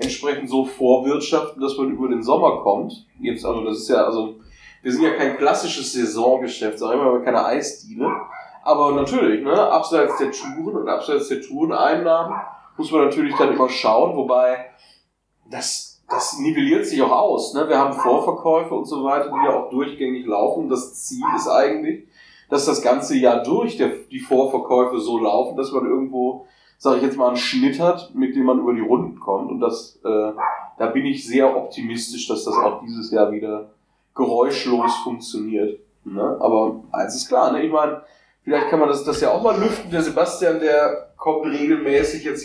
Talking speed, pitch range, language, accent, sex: 185 wpm, 125-165 Hz, German, German, male